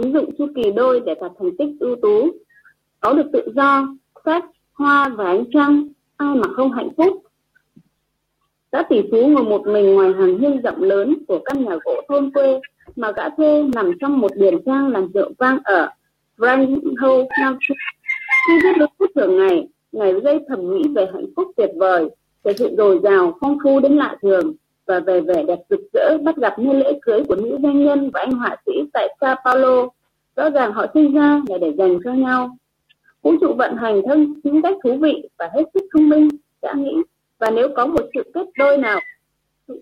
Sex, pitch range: female, 255-320 Hz